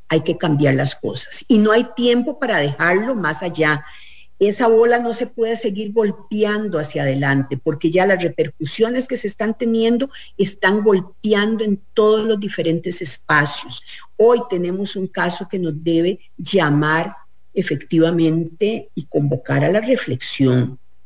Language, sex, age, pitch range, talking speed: English, female, 50-69, 155-230 Hz, 145 wpm